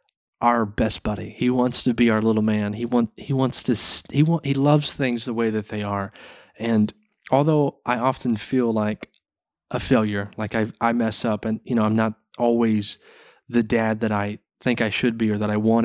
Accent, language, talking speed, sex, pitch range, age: American, English, 215 wpm, male, 110-140 Hz, 30-49